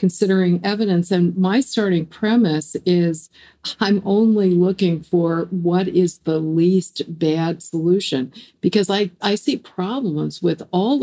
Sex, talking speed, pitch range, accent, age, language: female, 130 wpm, 155-195 Hz, American, 50-69, English